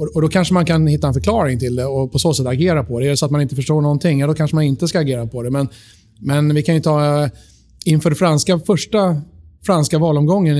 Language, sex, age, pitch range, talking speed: Swedish, male, 30-49, 130-155 Hz, 255 wpm